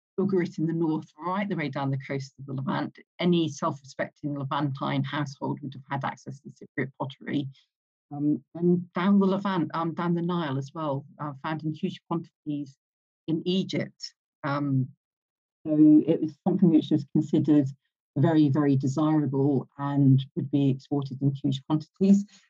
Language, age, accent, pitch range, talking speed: English, 50-69, British, 140-165 Hz, 155 wpm